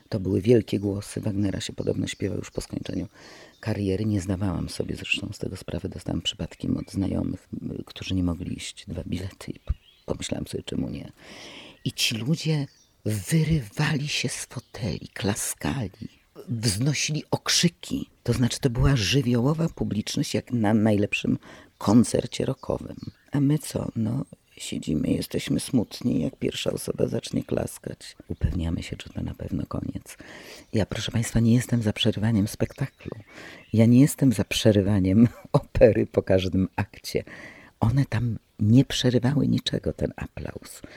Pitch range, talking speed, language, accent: 100-135 Hz, 145 wpm, Polish, native